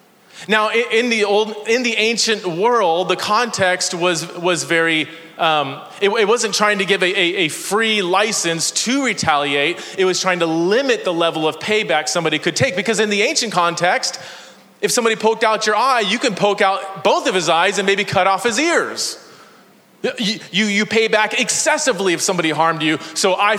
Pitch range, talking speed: 170-215 Hz, 195 wpm